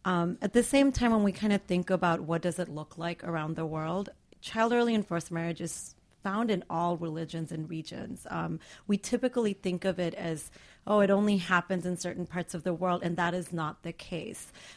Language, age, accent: English, 30-49, American